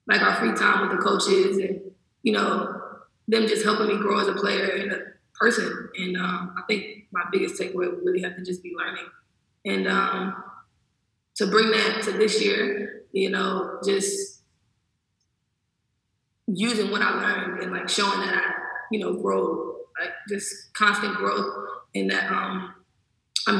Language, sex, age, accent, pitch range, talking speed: English, female, 20-39, American, 195-240 Hz, 170 wpm